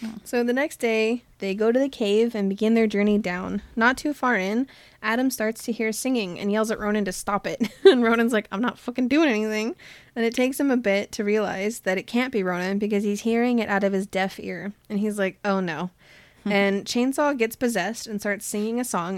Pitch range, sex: 195-230 Hz, female